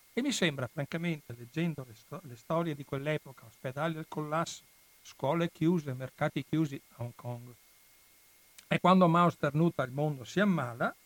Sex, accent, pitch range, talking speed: male, native, 140-170 Hz, 155 wpm